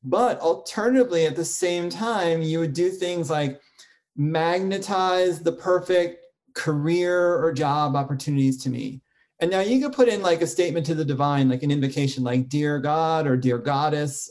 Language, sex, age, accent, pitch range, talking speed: English, male, 30-49, American, 145-185 Hz, 170 wpm